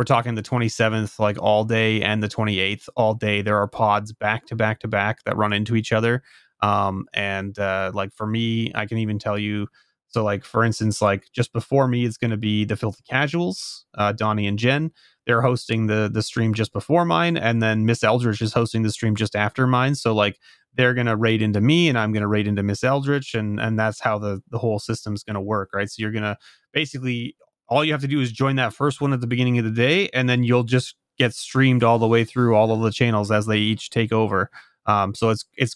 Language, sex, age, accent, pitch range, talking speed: English, male, 30-49, American, 105-125 Hz, 245 wpm